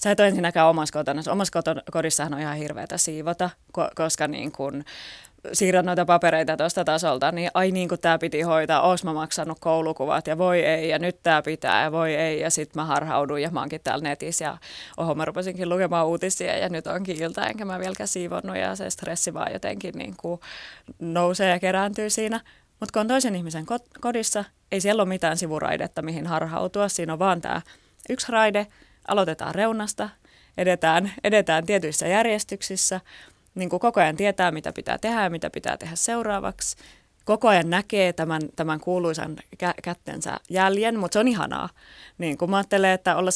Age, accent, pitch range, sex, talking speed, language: 20-39, native, 160-195 Hz, female, 175 wpm, Finnish